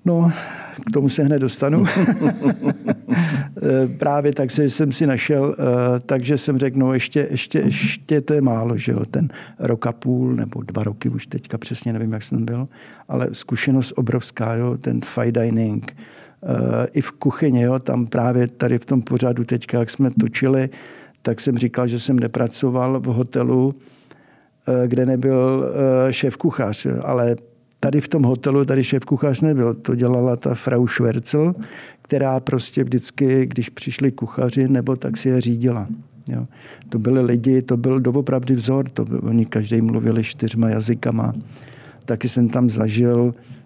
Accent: native